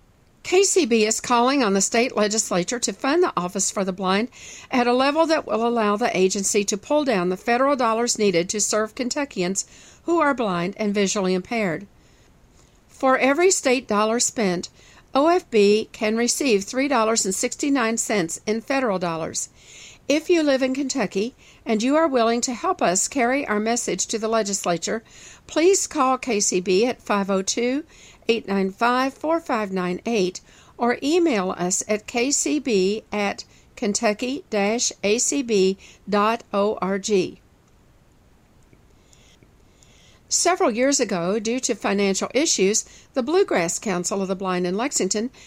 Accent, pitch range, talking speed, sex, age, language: American, 200-265 Hz, 135 wpm, female, 50-69, English